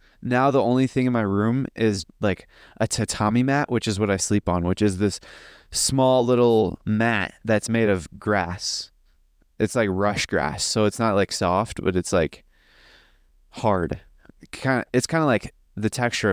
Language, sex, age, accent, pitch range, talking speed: English, male, 20-39, American, 95-120 Hz, 175 wpm